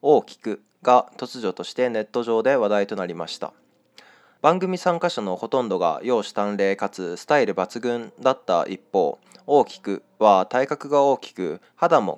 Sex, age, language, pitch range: male, 20-39, Japanese, 105-150 Hz